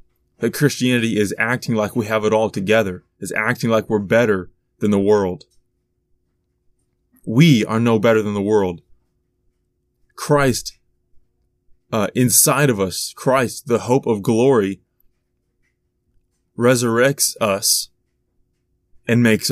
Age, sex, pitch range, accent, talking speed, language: 20-39, male, 105-135 Hz, American, 120 wpm, English